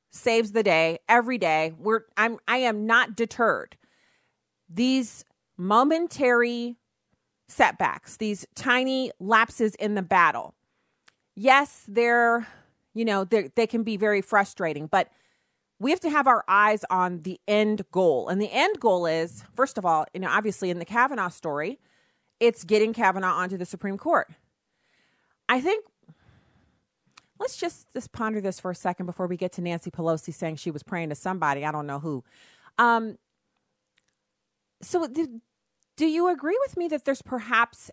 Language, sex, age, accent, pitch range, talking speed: English, female, 30-49, American, 180-240 Hz, 160 wpm